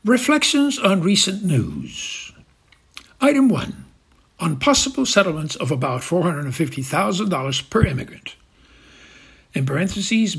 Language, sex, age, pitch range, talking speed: English, male, 60-79, 130-185 Hz, 90 wpm